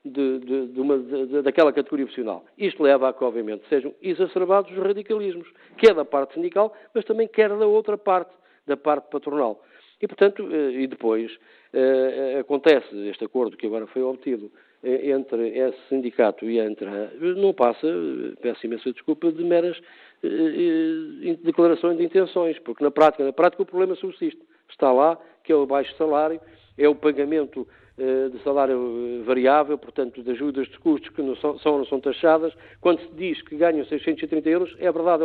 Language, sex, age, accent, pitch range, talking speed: Portuguese, male, 50-69, Portuguese, 135-185 Hz, 170 wpm